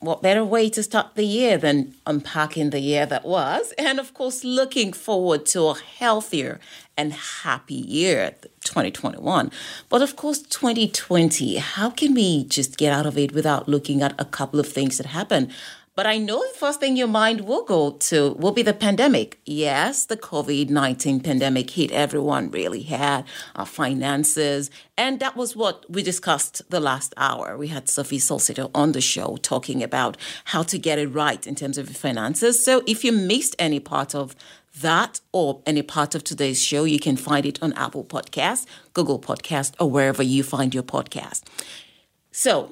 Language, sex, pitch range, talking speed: English, female, 140-210 Hz, 180 wpm